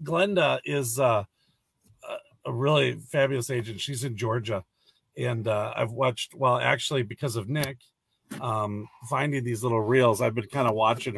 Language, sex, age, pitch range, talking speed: English, male, 50-69, 115-145 Hz, 155 wpm